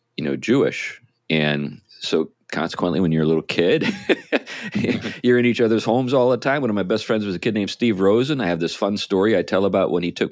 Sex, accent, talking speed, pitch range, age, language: male, American, 240 wpm, 95-125 Hz, 40-59, English